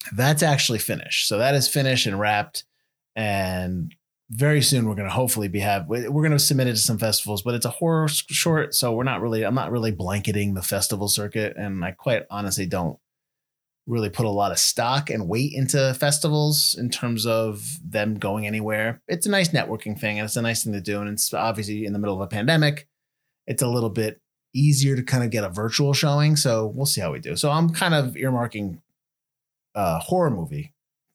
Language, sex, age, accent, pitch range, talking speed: English, male, 30-49, American, 105-145 Hz, 210 wpm